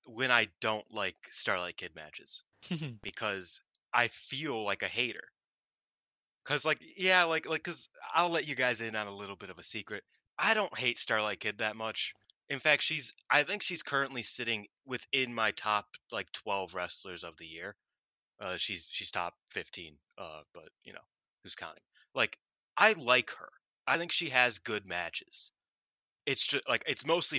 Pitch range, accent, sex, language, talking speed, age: 105-155 Hz, American, male, English, 175 wpm, 20-39